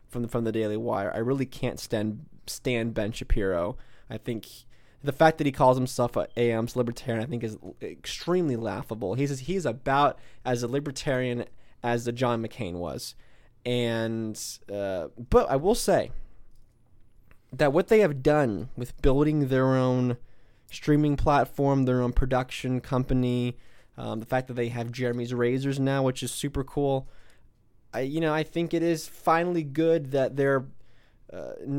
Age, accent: 20-39, American